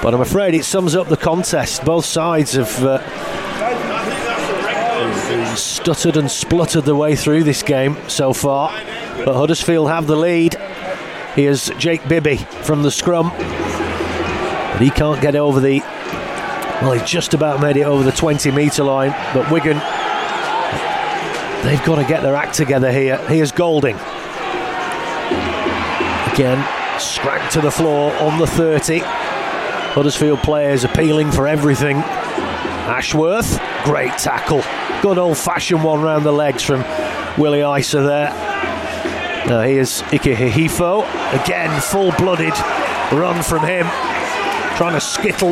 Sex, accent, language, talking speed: male, British, English, 135 wpm